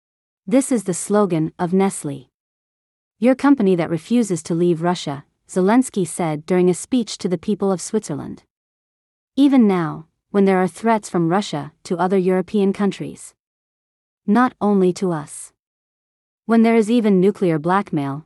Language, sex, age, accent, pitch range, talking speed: English, female, 40-59, American, 170-210 Hz, 150 wpm